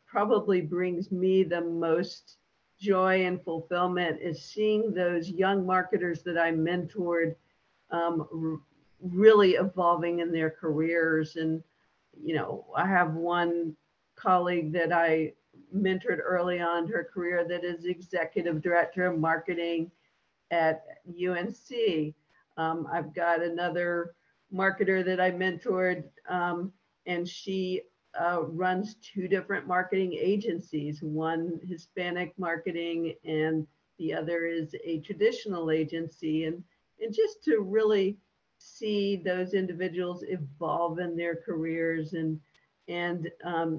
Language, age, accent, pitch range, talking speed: English, 50-69, American, 165-185 Hz, 120 wpm